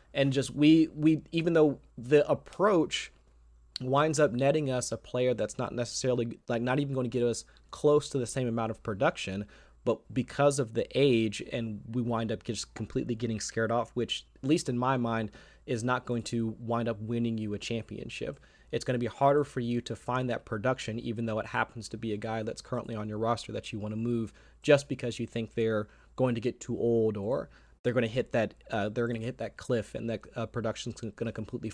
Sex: male